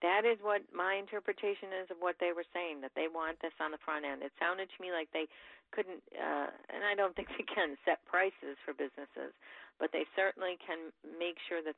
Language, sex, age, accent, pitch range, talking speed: English, female, 40-59, American, 150-180 Hz, 225 wpm